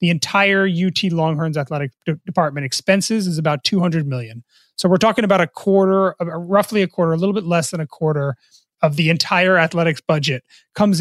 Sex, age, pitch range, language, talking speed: male, 30-49, 160-195 Hz, English, 180 wpm